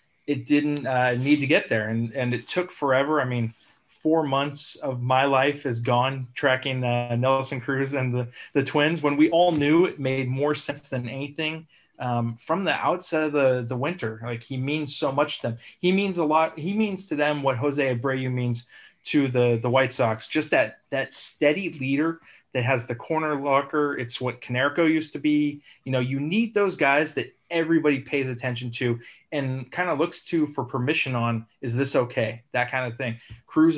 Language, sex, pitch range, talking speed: English, male, 125-145 Hz, 205 wpm